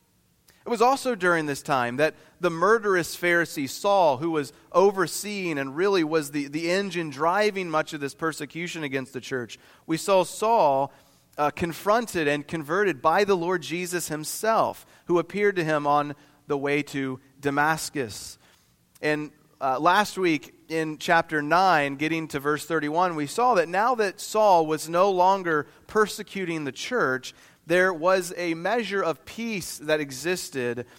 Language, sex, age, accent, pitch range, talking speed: English, male, 30-49, American, 140-180 Hz, 155 wpm